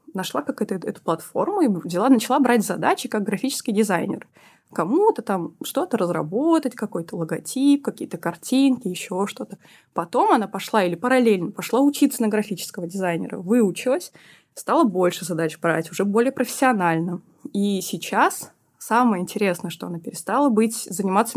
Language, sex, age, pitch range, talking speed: Russian, female, 20-39, 180-225 Hz, 140 wpm